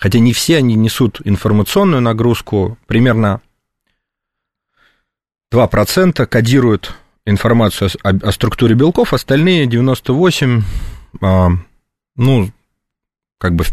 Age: 30-49